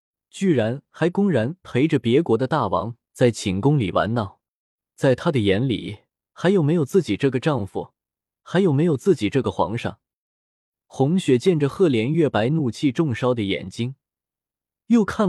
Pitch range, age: 115-160 Hz, 20-39